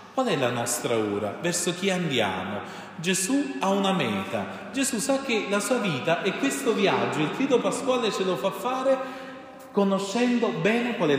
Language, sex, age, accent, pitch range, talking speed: Italian, male, 30-49, native, 150-215 Hz, 170 wpm